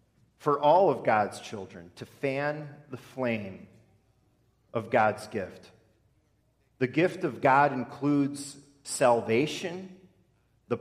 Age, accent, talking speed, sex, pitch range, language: 40-59, American, 105 wpm, male, 115-145 Hz, English